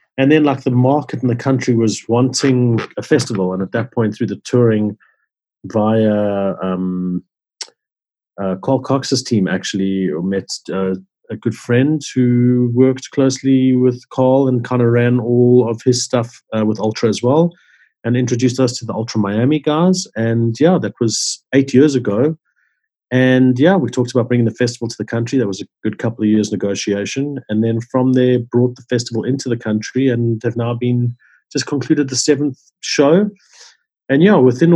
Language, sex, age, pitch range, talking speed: English, male, 40-59, 110-130 Hz, 180 wpm